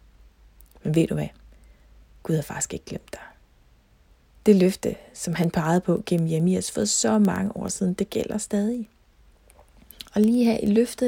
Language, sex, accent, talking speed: Danish, female, native, 170 wpm